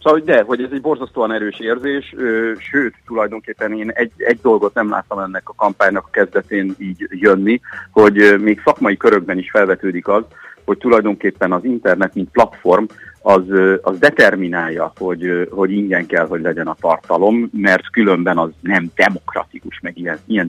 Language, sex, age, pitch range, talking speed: Hungarian, male, 50-69, 90-115 Hz, 160 wpm